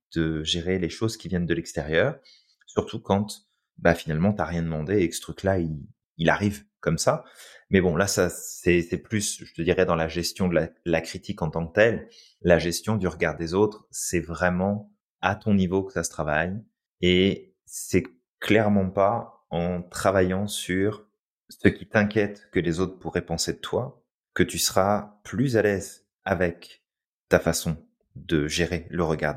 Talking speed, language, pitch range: 185 wpm, French, 80-105 Hz